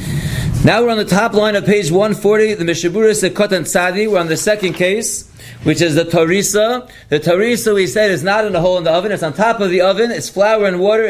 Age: 30-49